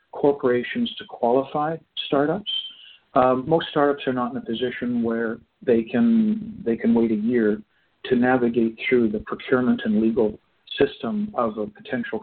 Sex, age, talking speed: male, 50-69, 150 wpm